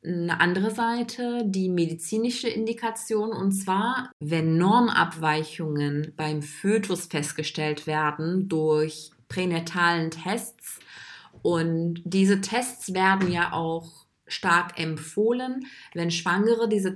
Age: 20-39